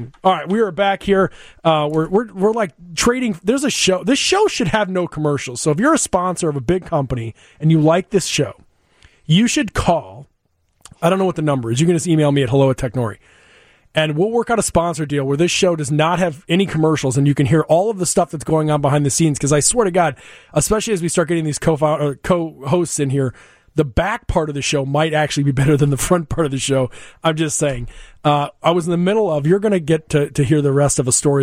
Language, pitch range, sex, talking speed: English, 145-190 Hz, male, 260 wpm